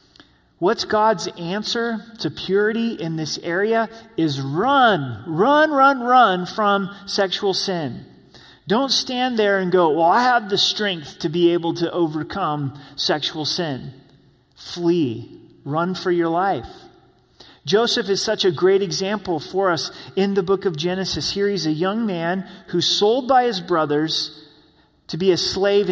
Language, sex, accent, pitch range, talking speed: English, male, American, 165-200 Hz, 150 wpm